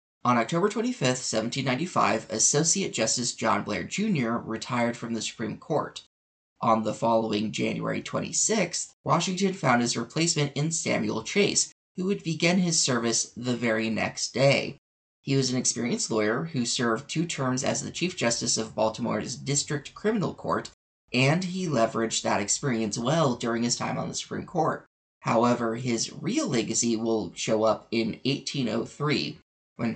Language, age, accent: English, 20-39, American